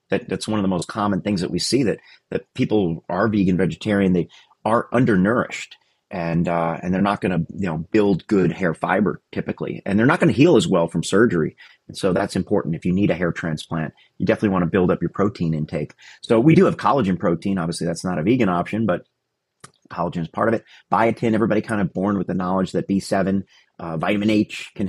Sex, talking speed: male, 230 wpm